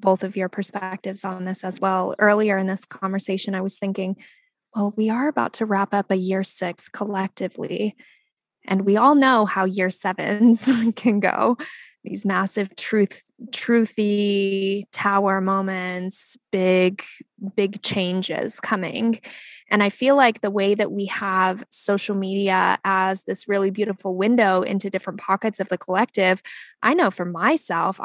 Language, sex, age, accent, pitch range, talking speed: English, female, 20-39, American, 195-225 Hz, 150 wpm